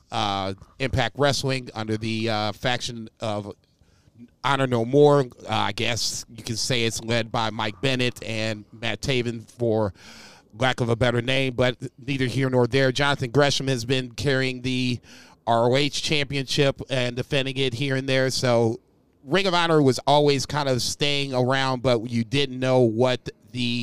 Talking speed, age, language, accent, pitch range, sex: 165 wpm, 30-49, English, American, 115-135 Hz, male